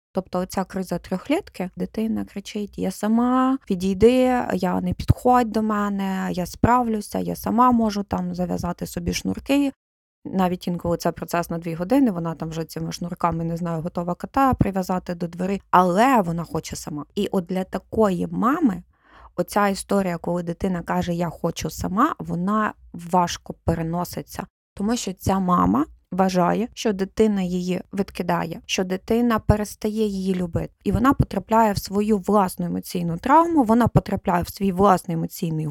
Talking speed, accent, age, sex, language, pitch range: 150 wpm, native, 20-39, female, Ukrainian, 180-220 Hz